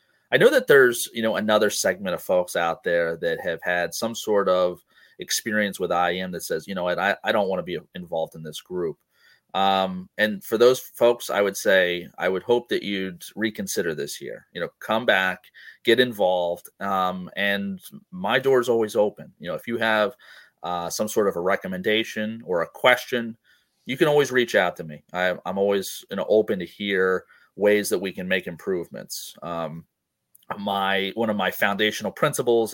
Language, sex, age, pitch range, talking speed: English, male, 30-49, 95-120 Hz, 185 wpm